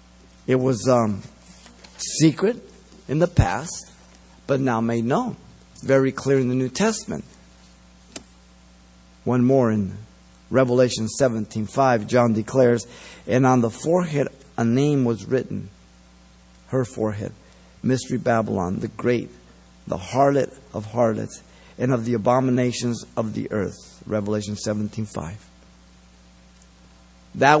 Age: 50-69